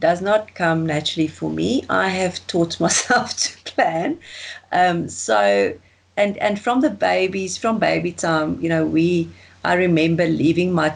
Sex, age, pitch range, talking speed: female, 30-49, 155-195 Hz, 160 wpm